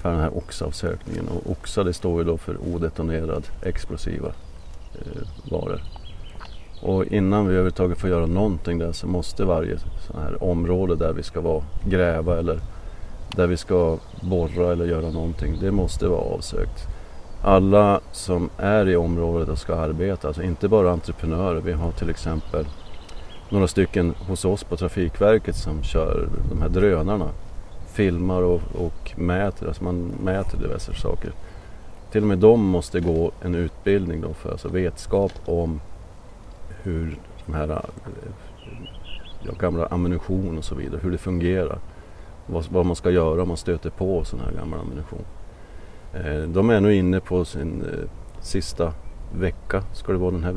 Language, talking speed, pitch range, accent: Swedish, 155 wpm, 85-95 Hz, native